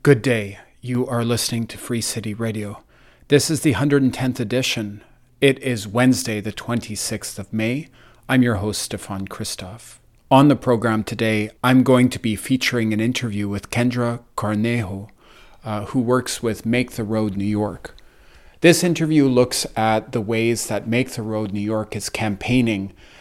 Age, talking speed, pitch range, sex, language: 40-59, 165 wpm, 110-125 Hz, male, English